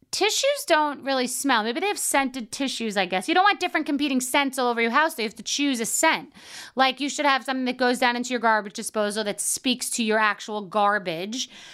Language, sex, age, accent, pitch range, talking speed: English, female, 30-49, American, 210-265 Hz, 240 wpm